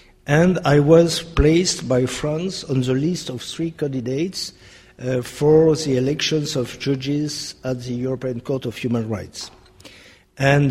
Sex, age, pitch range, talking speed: male, 50-69, 120-150 Hz, 145 wpm